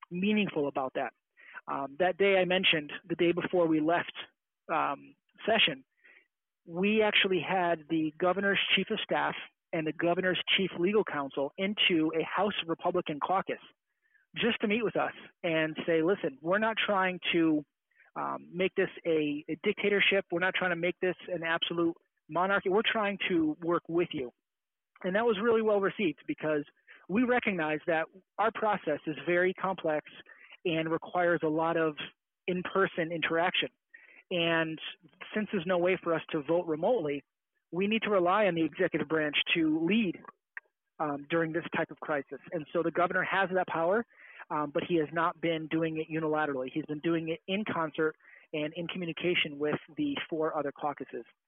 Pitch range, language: 155-190 Hz, English